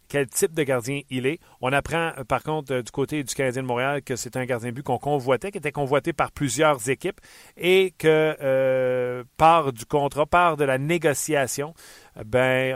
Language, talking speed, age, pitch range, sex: French, 195 wpm, 40-59, 115-140 Hz, male